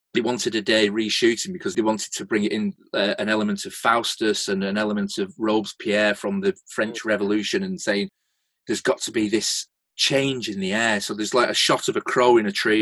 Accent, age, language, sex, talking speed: British, 30-49, English, male, 215 wpm